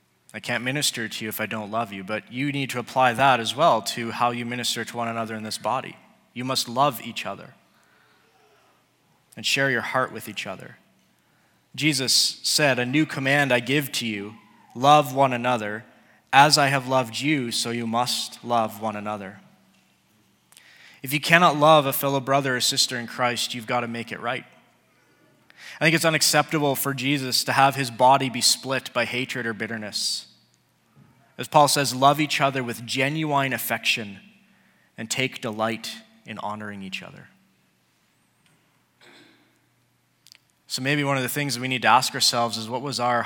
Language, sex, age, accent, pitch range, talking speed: English, male, 20-39, American, 110-140 Hz, 180 wpm